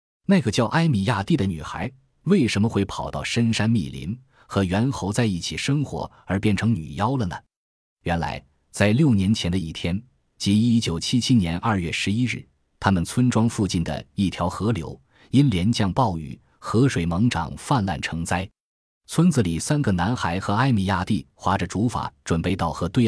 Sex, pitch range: male, 85-115 Hz